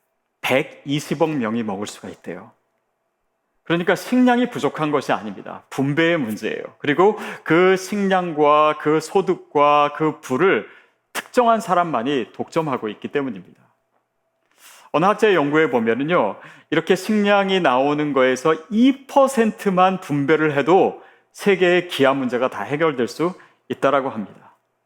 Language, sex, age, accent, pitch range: Korean, male, 40-59, native, 145-210 Hz